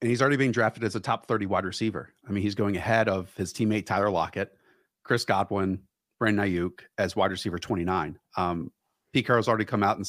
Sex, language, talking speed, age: male, English, 215 wpm, 40-59